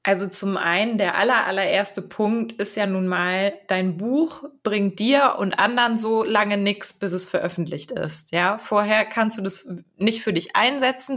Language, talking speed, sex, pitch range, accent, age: German, 170 wpm, female, 180-220 Hz, German, 20-39